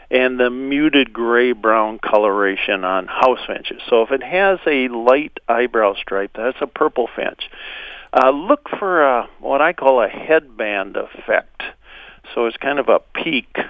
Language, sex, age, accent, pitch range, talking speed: English, male, 50-69, American, 115-145 Hz, 155 wpm